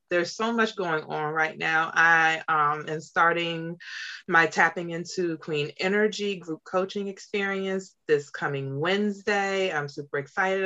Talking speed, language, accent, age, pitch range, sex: 140 wpm, English, American, 30-49, 155-195 Hz, female